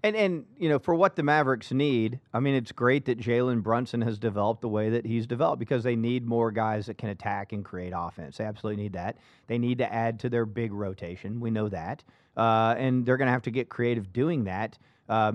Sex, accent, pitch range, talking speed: male, American, 115-135 Hz, 240 wpm